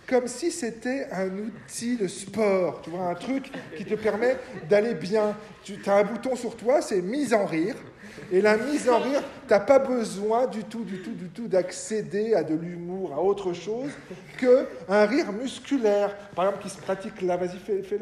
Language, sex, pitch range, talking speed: French, male, 180-235 Hz, 200 wpm